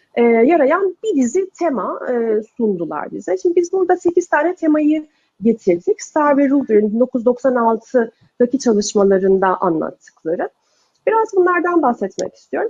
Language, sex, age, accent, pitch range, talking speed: Turkish, female, 40-59, native, 245-355 Hz, 120 wpm